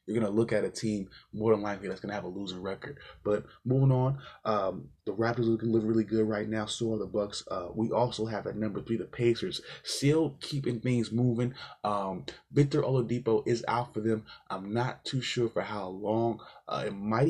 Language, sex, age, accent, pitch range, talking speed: English, male, 20-39, American, 105-125 Hz, 220 wpm